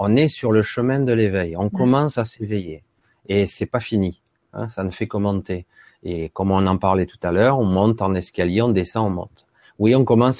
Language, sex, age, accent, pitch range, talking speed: French, male, 30-49, French, 105-150 Hz, 235 wpm